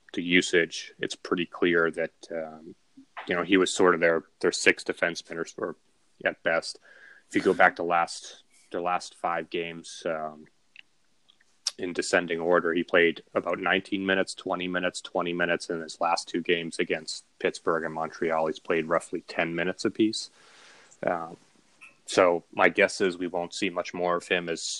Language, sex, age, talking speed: English, male, 30-49, 175 wpm